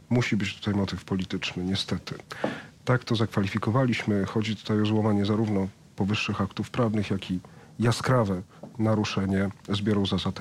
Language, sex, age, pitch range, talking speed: Polish, male, 40-59, 100-120 Hz, 135 wpm